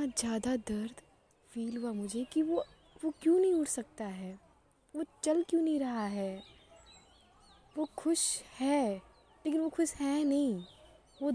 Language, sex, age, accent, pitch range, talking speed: Hindi, female, 20-39, native, 220-290 Hz, 150 wpm